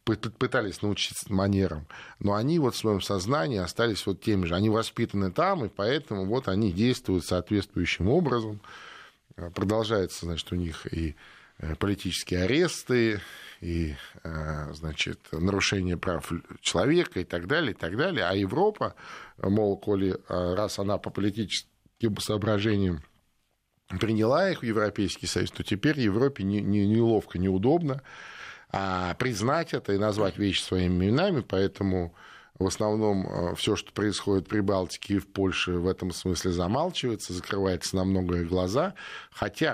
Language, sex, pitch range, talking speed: Russian, male, 90-110 Hz, 120 wpm